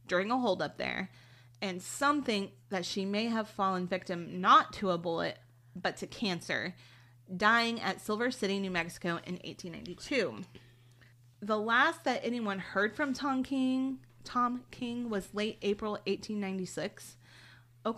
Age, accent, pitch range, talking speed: 30-49, American, 175-225 Hz, 140 wpm